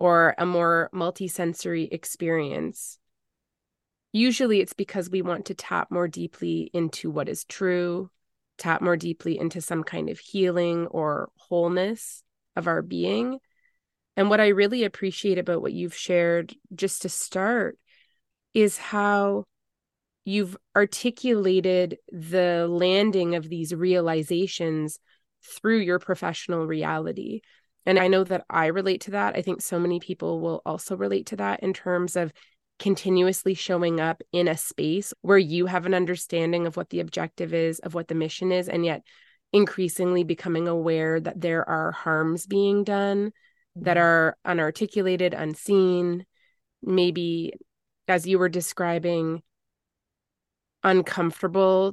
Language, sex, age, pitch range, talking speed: English, female, 20-39, 170-195 Hz, 135 wpm